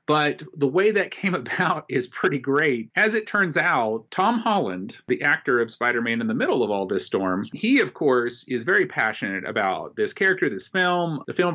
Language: English